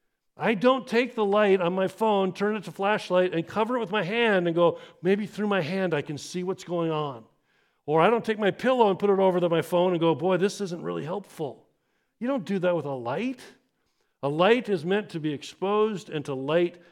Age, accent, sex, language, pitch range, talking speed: 50-69, American, male, English, 155-200 Hz, 240 wpm